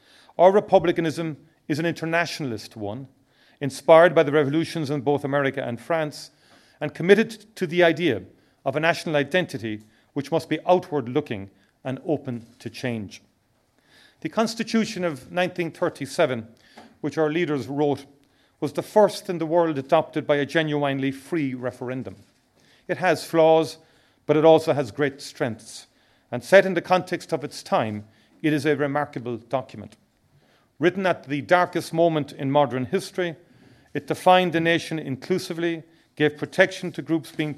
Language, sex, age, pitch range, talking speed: English, male, 40-59, 130-165 Hz, 145 wpm